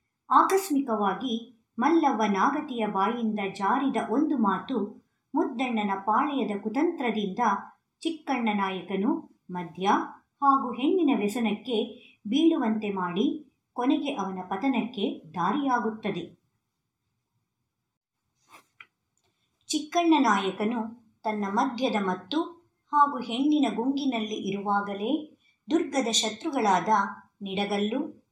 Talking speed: 70 wpm